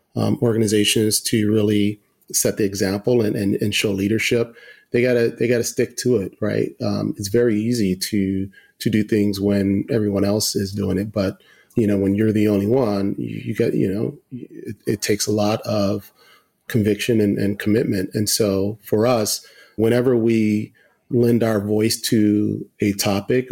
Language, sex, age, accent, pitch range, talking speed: English, male, 40-59, American, 100-115 Hz, 175 wpm